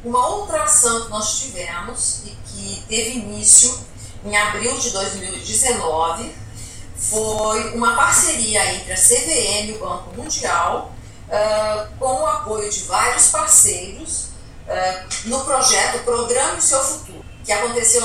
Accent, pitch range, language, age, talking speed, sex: Brazilian, 200-260 Hz, Portuguese, 40-59, 125 wpm, female